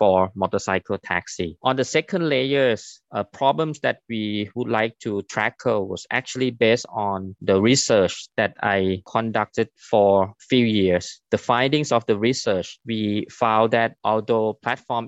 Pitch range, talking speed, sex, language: 100-125 Hz, 150 wpm, male, English